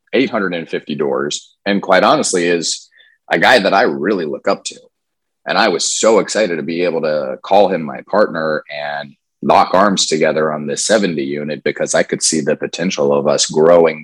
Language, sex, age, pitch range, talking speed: English, male, 30-49, 80-90 Hz, 190 wpm